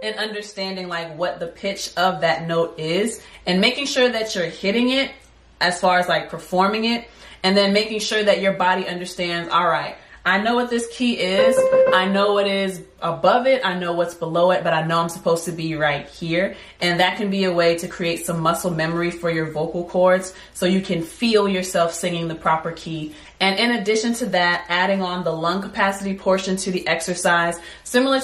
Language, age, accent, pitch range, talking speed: English, 30-49, American, 170-200 Hz, 210 wpm